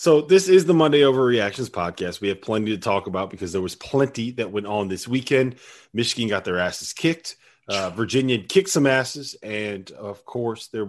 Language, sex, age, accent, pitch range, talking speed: English, male, 30-49, American, 105-135 Hz, 200 wpm